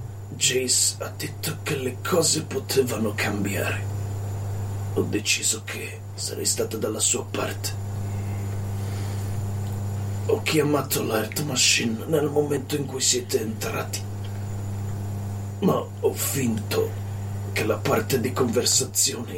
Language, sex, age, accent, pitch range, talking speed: Italian, male, 40-59, native, 100-105 Hz, 105 wpm